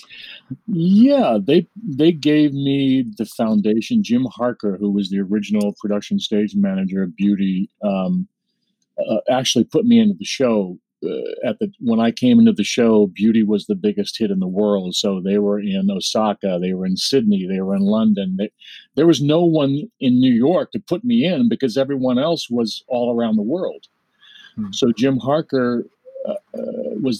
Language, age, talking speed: English, 50-69, 175 wpm